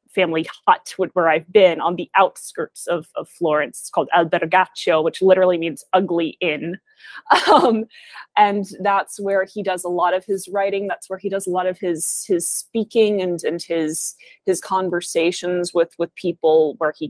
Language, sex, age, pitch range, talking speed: English, female, 20-39, 170-200 Hz, 175 wpm